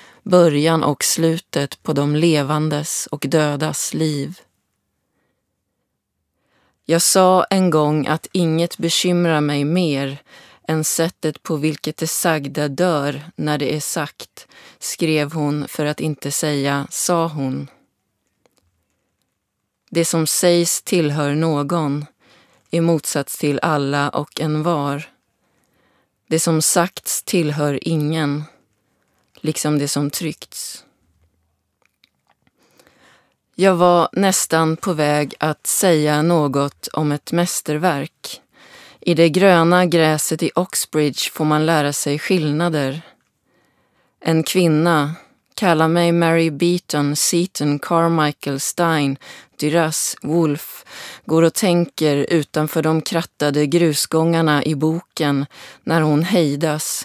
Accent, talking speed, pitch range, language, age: native, 110 wpm, 145-170 Hz, Swedish, 30-49